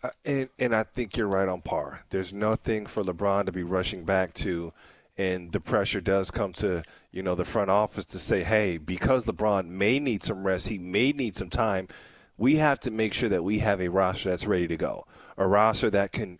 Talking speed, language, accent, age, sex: 220 wpm, English, American, 30-49, male